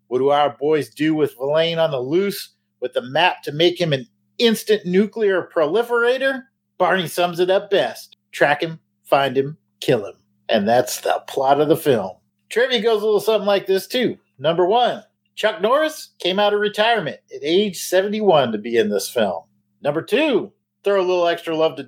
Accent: American